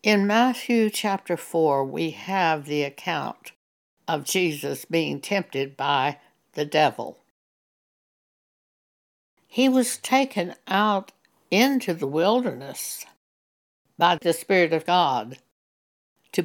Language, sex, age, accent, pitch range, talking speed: English, female, 60-79, American, 145-205 Hz, 100 wpm